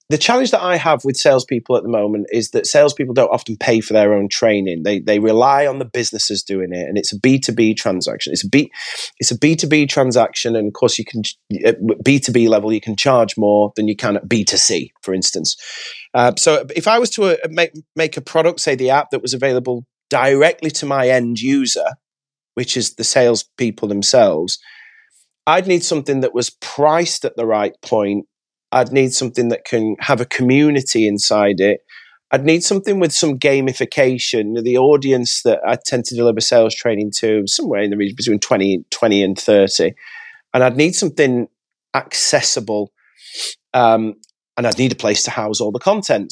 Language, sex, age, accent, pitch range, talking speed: English, male, 30-49, British, 110-150 Hz, 200 wpm